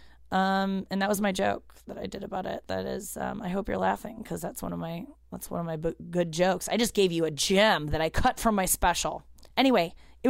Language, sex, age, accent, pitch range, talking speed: English, female, 20-39, American, 185-240 Hz, 250 wpm